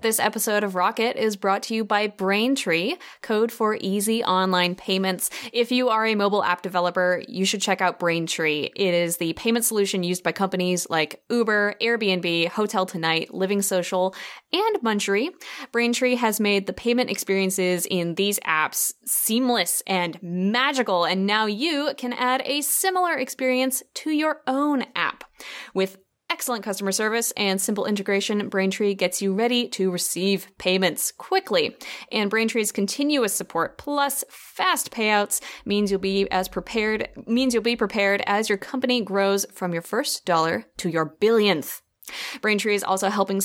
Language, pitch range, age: English, 190-245 Hz, 20-39